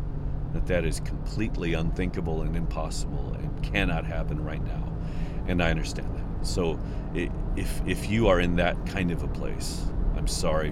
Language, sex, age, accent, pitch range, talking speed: English, male, 40-59, American, 70-85 Hz, 160 wpm